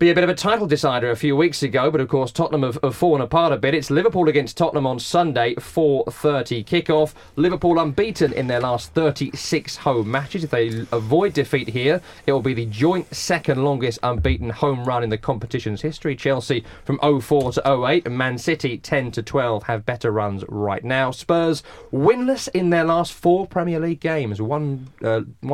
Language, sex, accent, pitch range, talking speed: English, male, British, 125-160 Hz, 195 wpm